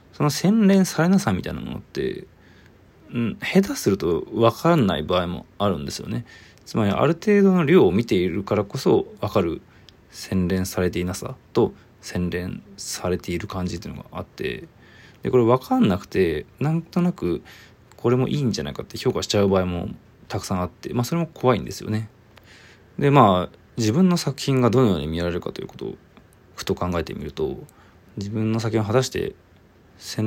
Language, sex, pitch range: Japanese, male, 95-140 Hz